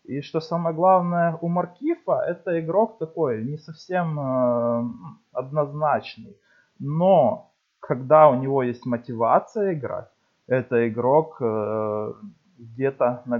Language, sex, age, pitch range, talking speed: Russian, male, 20-39, 115-140 Hz, 110 wpm